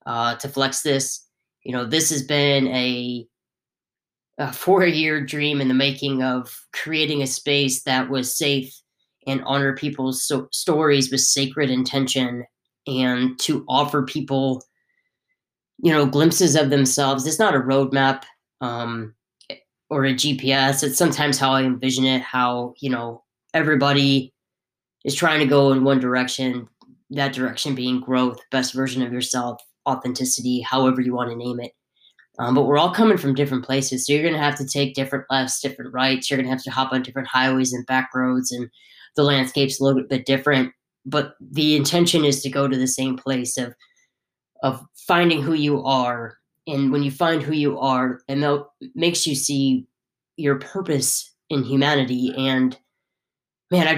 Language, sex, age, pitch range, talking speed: English, female, 10-29, 130-145 Hz, 170 wpm